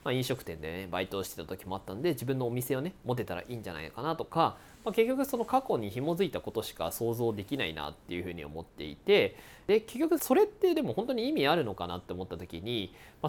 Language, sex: Japanese, male